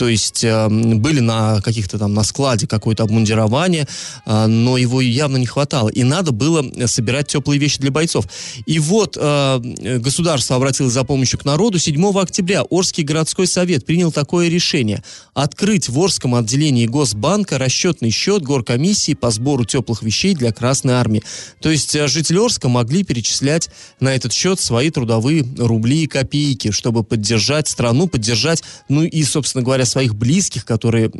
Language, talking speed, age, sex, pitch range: Russian, 155 wpm, 20-39, male, 120-165 Hz